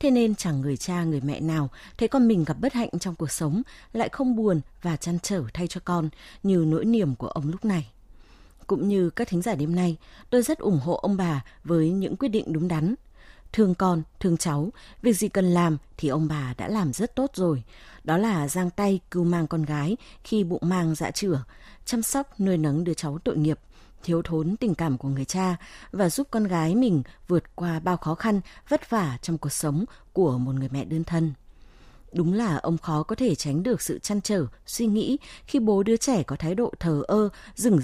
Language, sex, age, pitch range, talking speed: Vietnamese, female, 20-39, 155-210 Hz, 220 wpm